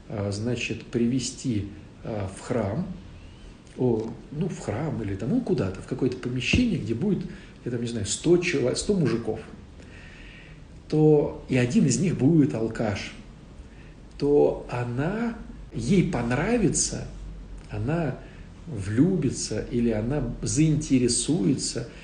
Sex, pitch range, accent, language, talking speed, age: male, 110-140 Hz, native, Russian, 110 wpm, 50-69